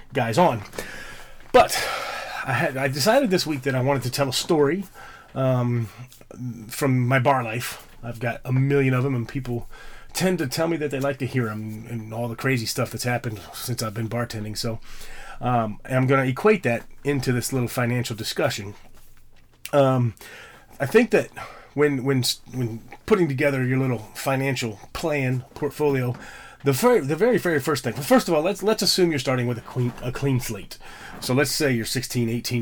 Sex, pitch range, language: male, 115-140 Hz, English